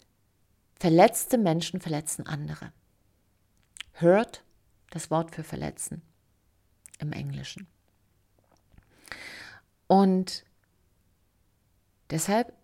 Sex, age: female, 40-59